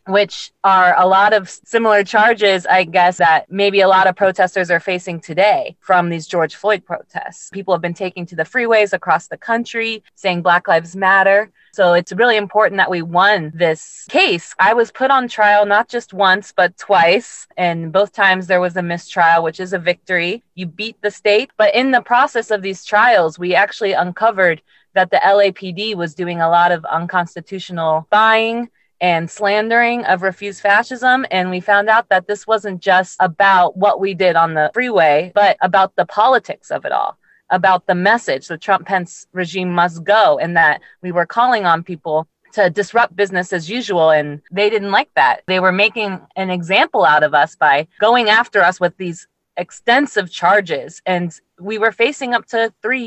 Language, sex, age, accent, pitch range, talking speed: English, female, 20-39, American, 175-210 Hz, 190 wpm